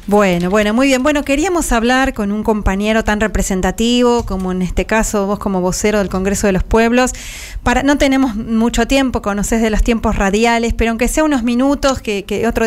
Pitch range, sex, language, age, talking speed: 200-240 Hz, female, Spanish, 20-39, 200 wpm